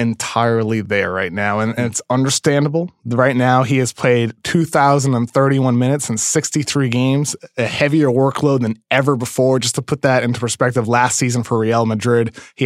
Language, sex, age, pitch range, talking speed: English, male, 20-39, 115-140 Hz, 170 wpm